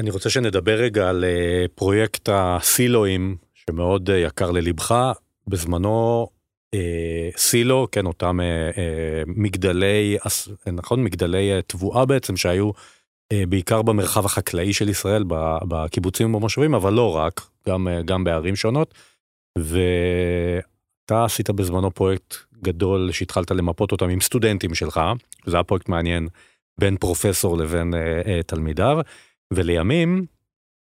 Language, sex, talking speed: Hebrew, male, 105 wpm